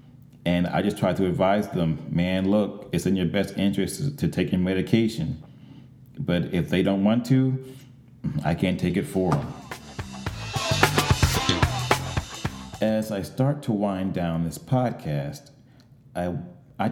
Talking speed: 140 wpm